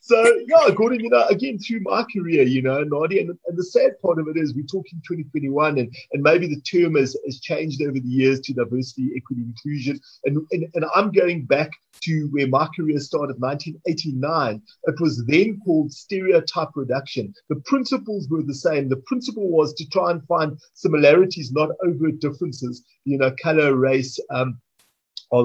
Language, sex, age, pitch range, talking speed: English, male, 30-49, 145-195 Hz, 190 wpm